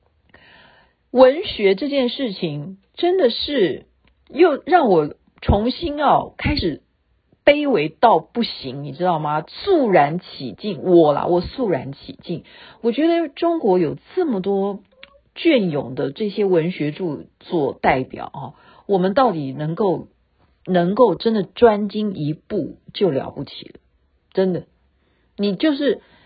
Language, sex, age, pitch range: Chinese, female, 50-69, 165-245 Hz